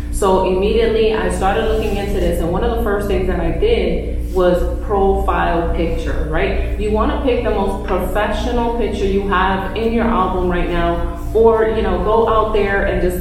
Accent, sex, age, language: American, female, 30-49, English